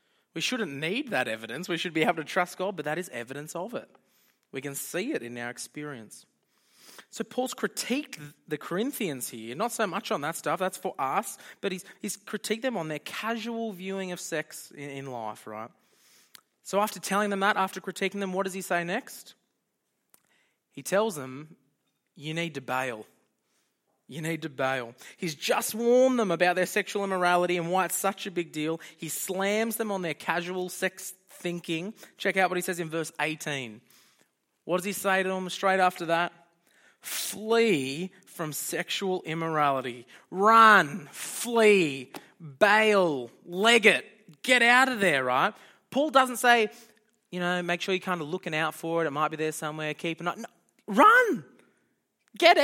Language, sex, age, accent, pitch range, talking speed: English, male, 20-39, Australian, 155-210 Hz, 180 wpm